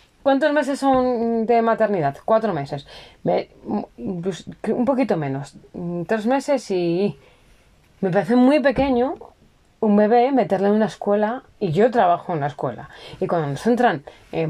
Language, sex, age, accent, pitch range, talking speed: Spanish, female, 20-39, Spanish, 185-245 Hz, 140 wpm